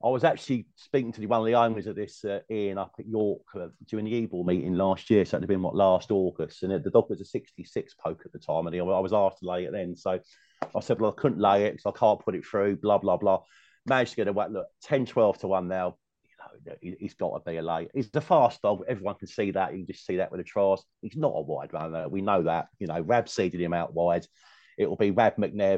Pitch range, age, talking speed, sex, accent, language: 90-110 Hz, 30-49, 280 wpm, male, British, English